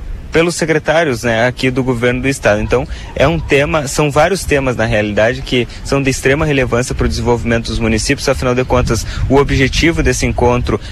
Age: 20-39